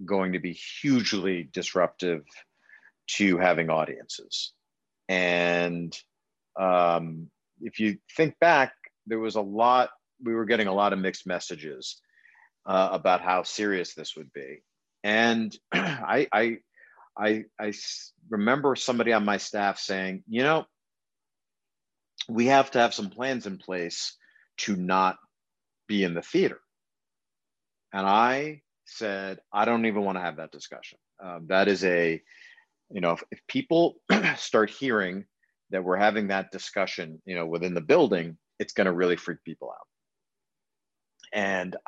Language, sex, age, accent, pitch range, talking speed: English, male, 50-69, American, 90-115 Hz, 145 wpm